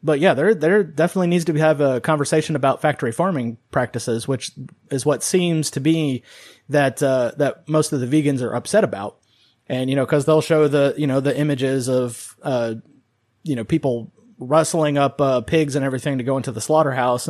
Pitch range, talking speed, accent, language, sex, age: 125-150 Hz, 200 wpm, American, English, male, 30-49